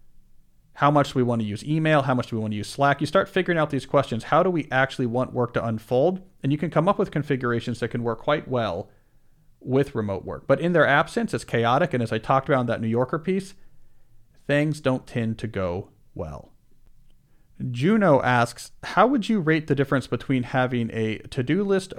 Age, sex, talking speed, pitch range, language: 40-59, male, 220 wpm, 120-155 Hz, English